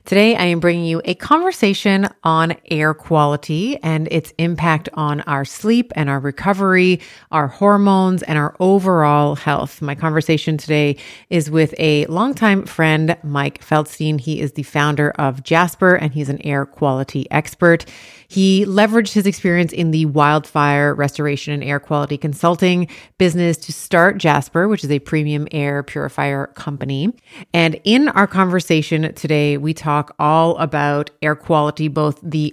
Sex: female